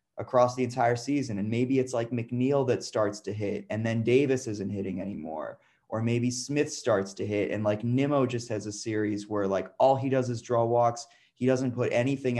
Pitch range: 110-135 Hz